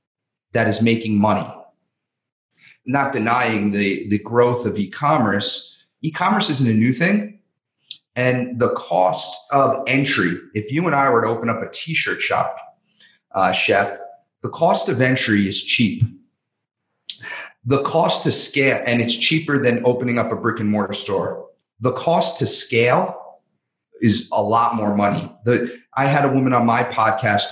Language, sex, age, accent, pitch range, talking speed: English, male, 40-59, American, 110-135 Hz, 155 wpm